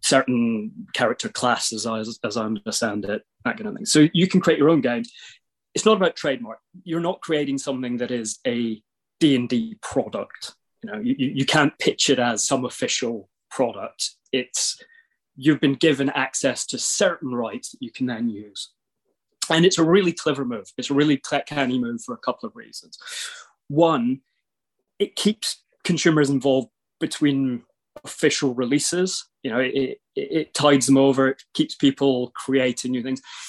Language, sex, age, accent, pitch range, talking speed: English, male, 20-39, British, 125-170 Hz, 170 wpm